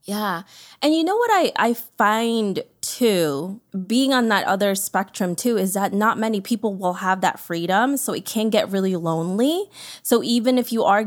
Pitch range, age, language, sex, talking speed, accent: 185-230 Hz, 20-39, English, female, 190 wpm, American